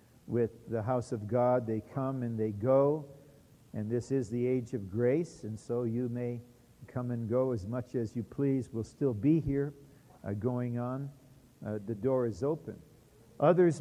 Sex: male